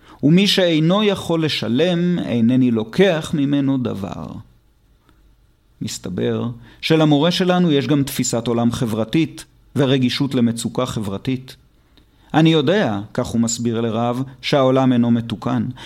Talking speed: 105 wpm